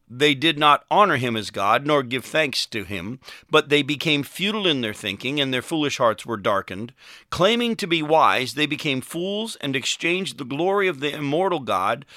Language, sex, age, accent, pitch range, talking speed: English, male, 50-69, American, 120-160 Hz, 195 wpm